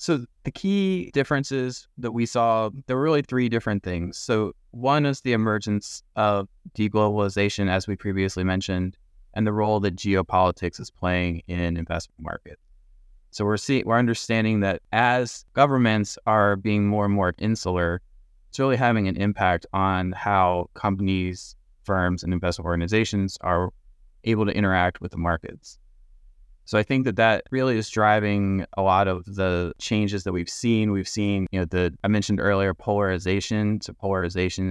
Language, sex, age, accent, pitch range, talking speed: English, male, 20-39, American, 90-105 Hz, 165 wpm